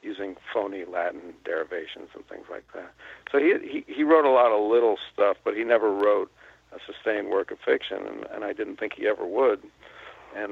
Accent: American